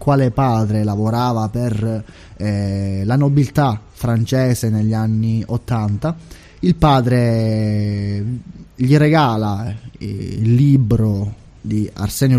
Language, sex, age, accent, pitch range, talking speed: Italian, male, 20-39, native, 110-135 Hz, 95 wpm